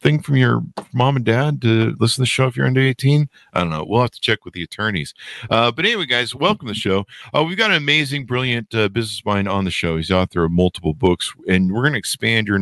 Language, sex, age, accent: English, male, 50-69, American